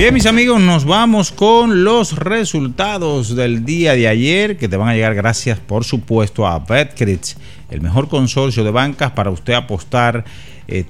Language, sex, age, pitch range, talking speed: Spanish, male, 50-69, 110-130 Hz, 170 wpm